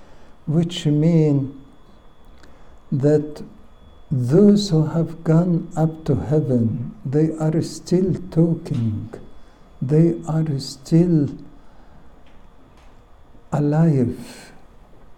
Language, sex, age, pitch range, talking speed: English, male, 60-79, 130-165 Hz, 70 wpm